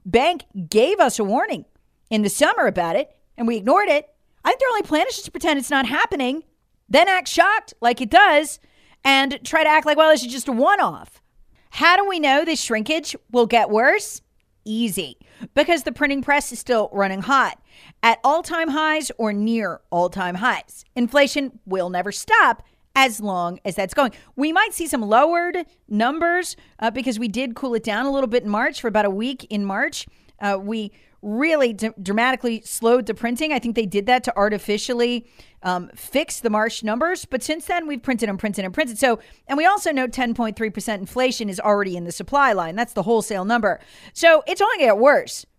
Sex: female